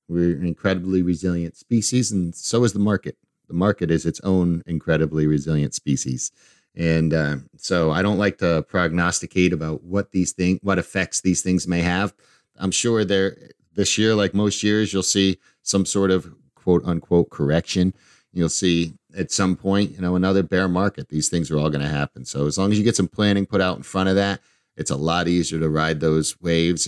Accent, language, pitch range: American, English, 80-100 Hz